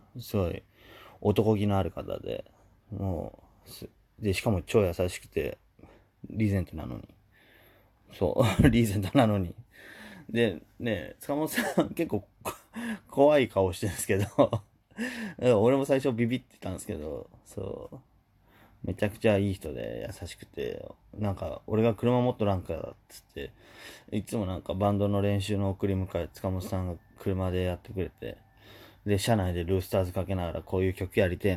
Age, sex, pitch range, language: 20-39, male, 95-110 Hz, Japanese